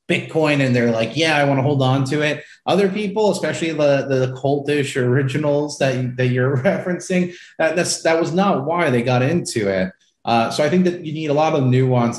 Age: 30-49